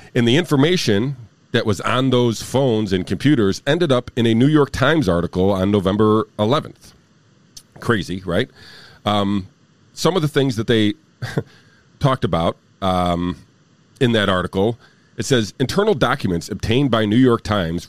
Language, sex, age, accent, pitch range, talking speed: English, male, 40-59, American, 95-130 Hz, 150 wpm